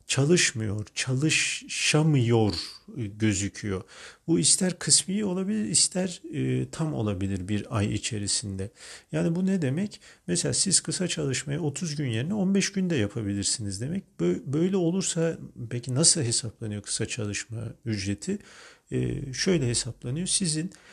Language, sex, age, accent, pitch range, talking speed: Turkish, male, 50-69, native, 110-165 Hz, 110 wpm